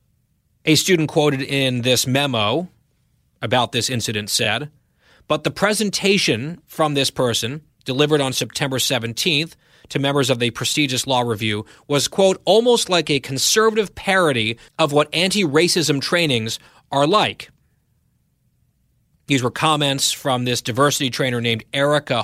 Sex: male